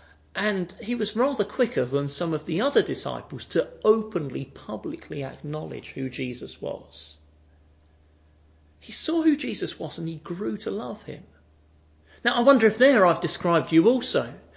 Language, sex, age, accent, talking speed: English, male, 40-59, British, 155 wpm